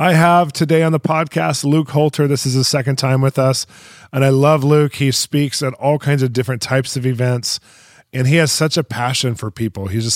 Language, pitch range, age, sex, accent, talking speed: English, 115-135 Hz, 20-39, male, American, 230 wpm